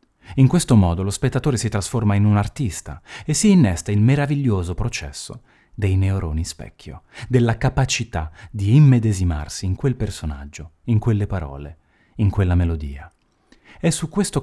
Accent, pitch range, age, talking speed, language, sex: native, 85-125 Hz, 30-49, 145 wpm, Italian, male